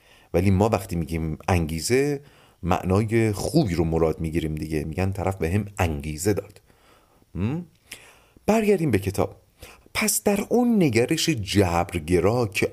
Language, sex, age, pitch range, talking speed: Persian, male, 40-59, 90-135 Hz, 125 wpm